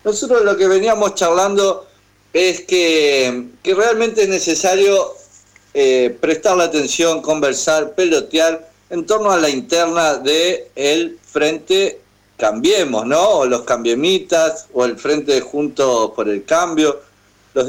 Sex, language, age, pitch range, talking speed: male, Spanish, 50-69, 130-190 Hz, 130 wpm